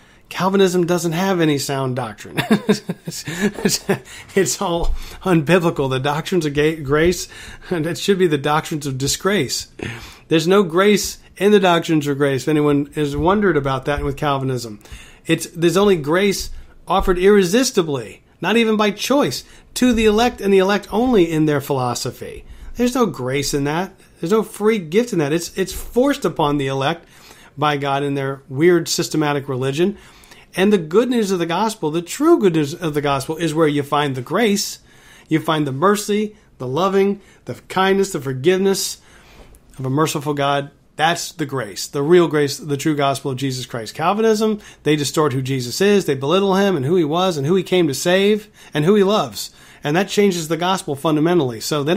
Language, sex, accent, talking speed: English, male, American, 180 wpm